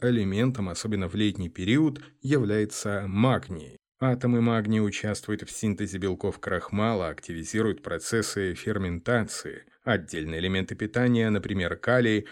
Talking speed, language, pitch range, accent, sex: 105 wpm, Russian, 95-120 Hz, native, male